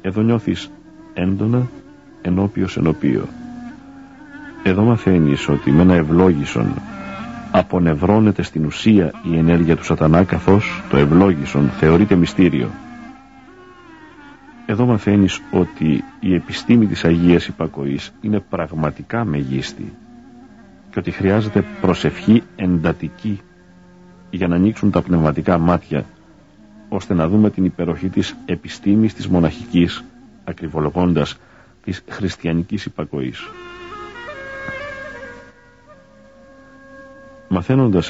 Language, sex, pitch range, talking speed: Greek, male, 85-115 Hz, 95 wpm